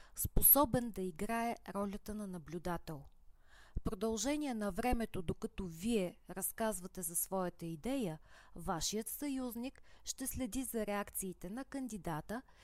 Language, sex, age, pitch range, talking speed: Bulgarian, female, 20-39, 175-230 Hz, 115 wpm